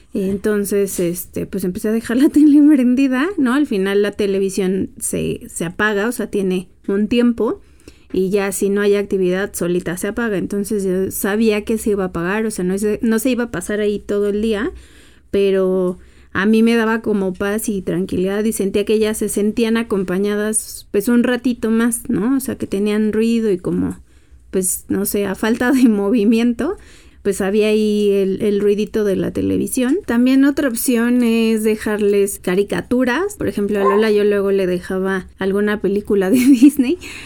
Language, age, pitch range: Spanish, 30-49, 195-225 Hz